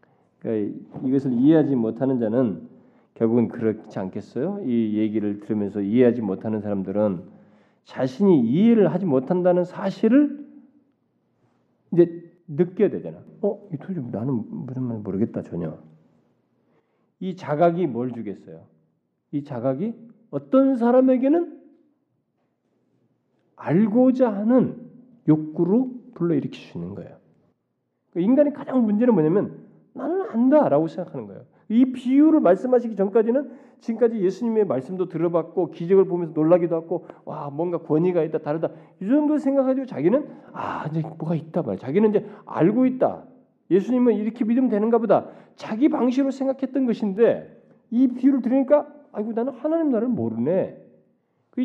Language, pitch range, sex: Korean, 155-255 Hz, male